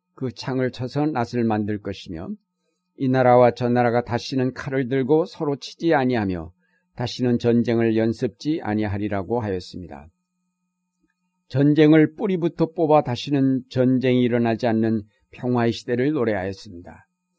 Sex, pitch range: male, 120-160 Hz